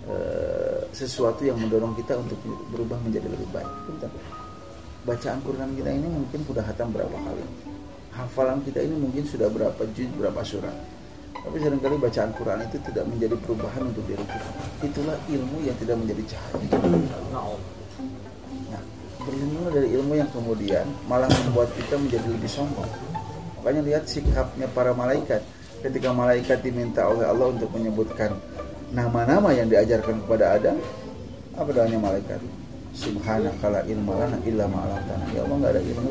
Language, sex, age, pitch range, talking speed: Indonesian, male, 30-49, 100-130 Hz, 135 wpm